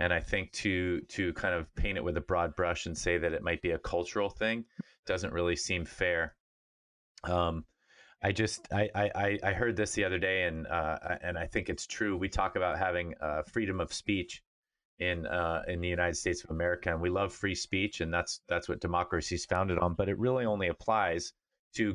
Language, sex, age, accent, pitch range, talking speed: English, male, 30-49, American, 85-100 Hz, 215 wpm